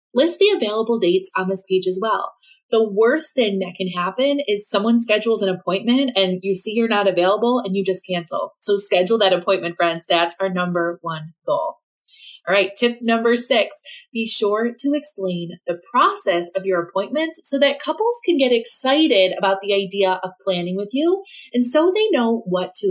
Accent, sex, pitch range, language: American, female, 190-255 Hz, English